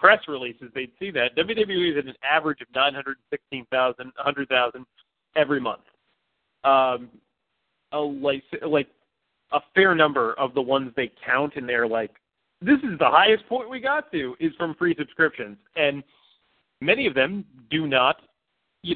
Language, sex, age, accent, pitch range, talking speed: English, male, 40-59, American, 145-215 Hz, 170 wpm